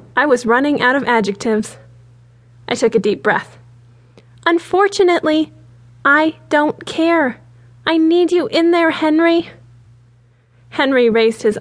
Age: 20-39